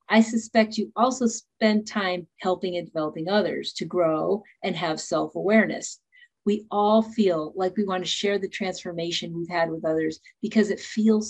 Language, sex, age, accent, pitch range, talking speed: English, female, 50-69, American, 170-220 Hz, 170 wpm